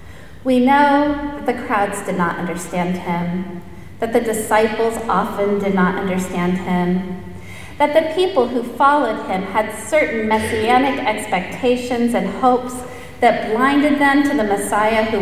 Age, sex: 30-49, female